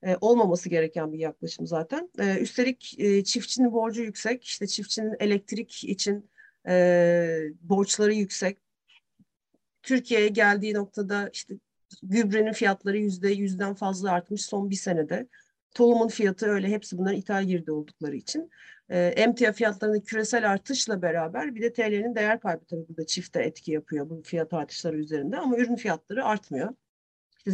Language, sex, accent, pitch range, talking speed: Turkish, female, native, 180-220 Hz, 135 wpm